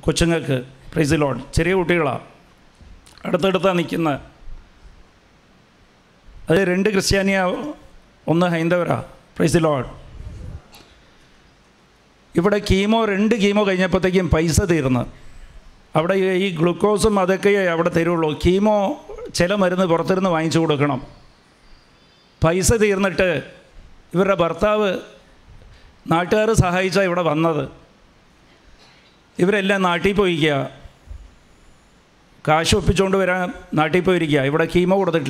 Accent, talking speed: Indian, 75 wpm